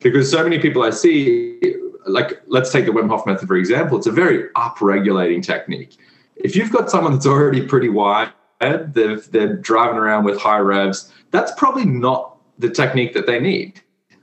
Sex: male